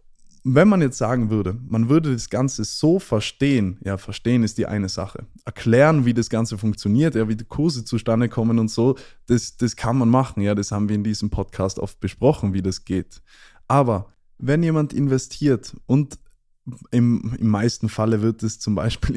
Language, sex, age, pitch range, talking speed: German, male, 20-39, 105-125 Hz, 190 wpm